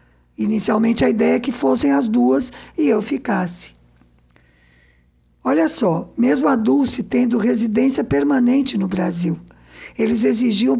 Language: Portuguese